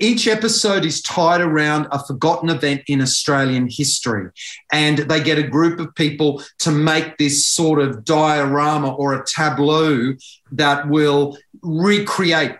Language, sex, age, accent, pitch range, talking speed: English, male, 40-59, Australian, 145-170 Hz, 145 wpm